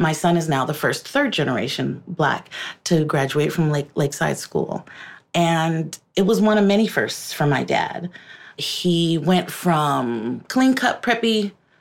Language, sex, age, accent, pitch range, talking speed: English, female, 30-49, American, 160-200 Hz, 150 wpm